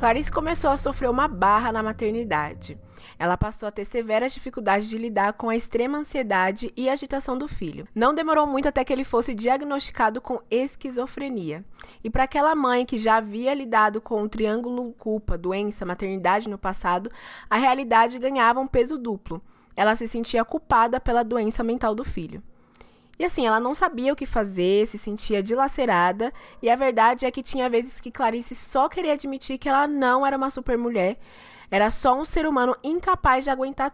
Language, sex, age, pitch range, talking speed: Portuguese, female, 20-39, 205-265 Hz, 180 wpm